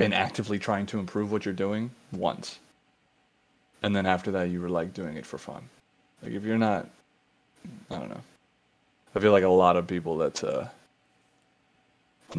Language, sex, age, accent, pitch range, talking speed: English, male, 20-39, American, 90-105 Hz, 180 wpm